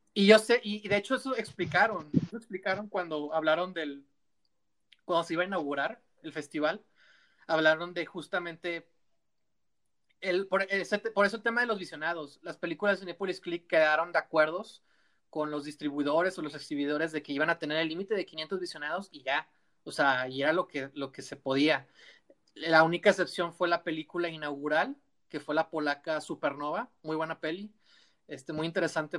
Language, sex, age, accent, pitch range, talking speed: Spanish, male, 30-49, Mexican, 155-190 Hz, 180 wpm